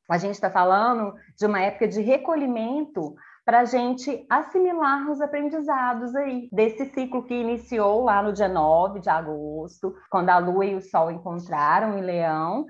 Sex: female